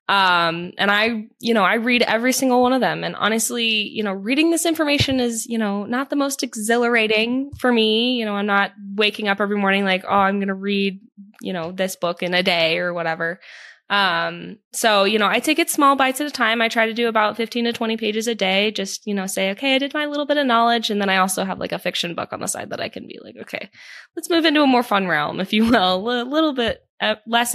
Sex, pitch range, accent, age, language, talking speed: female, 185-240 Hz, American, 20-39, English, 255 wpm